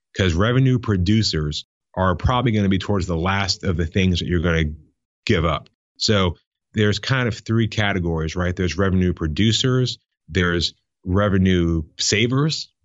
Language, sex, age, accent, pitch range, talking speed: English, male, 30-49, American, 85-100 Hz, 155 wpm